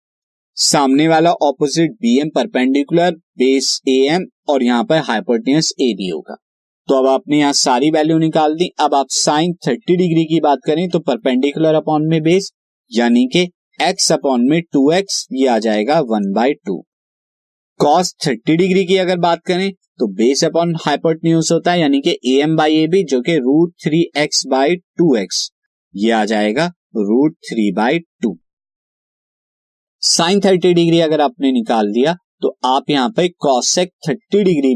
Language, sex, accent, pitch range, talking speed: Hindi, male, native, 130-175 Hz, 155 wpm